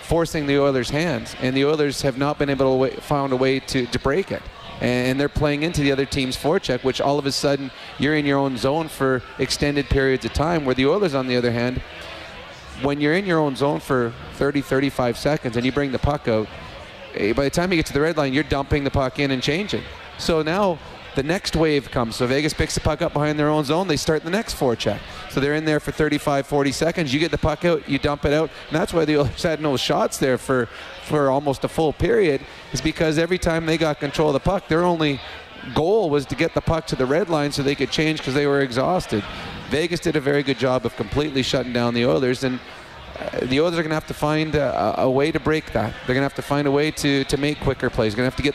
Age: 30-49